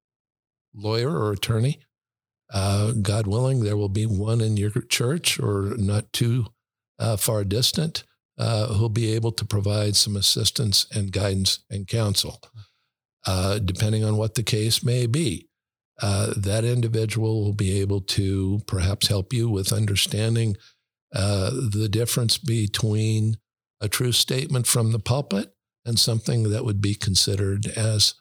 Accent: American